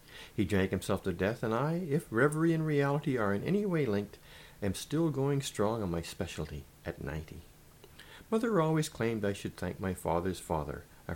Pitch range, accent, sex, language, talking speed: 95-150 Hz, American, male, English, 190 wpm